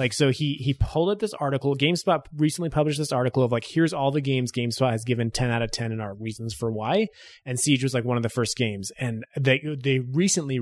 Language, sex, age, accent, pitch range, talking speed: English, male, 30-49, American, 120-160 Hz, 250 wpm